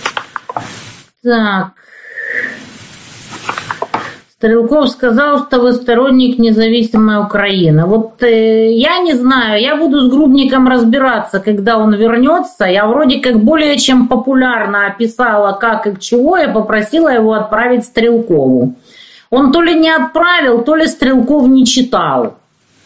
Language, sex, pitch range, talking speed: Russian, female, 225-295 Hz, 125 wpm